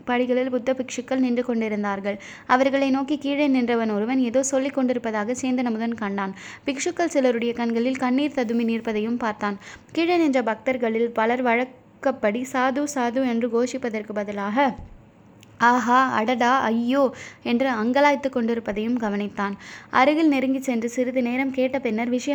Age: 20-39